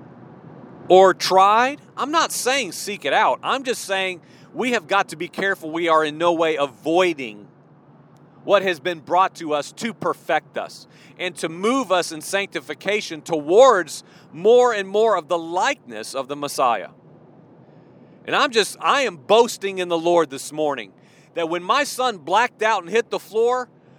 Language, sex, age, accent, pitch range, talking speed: English, male, 40-59, American, 170-240 Hz, 175 wpm